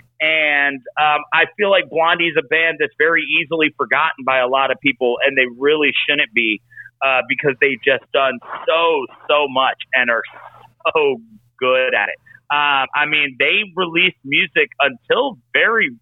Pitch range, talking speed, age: 125-165 Hz, 170 wpm, 40-59